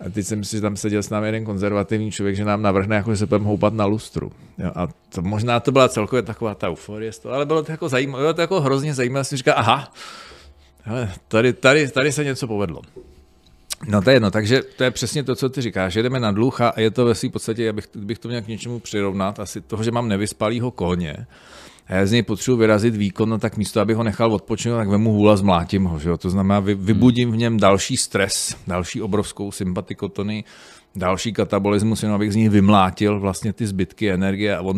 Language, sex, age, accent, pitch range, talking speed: Czech, male, 40-59, native, 95-115 Hz, 225 wpm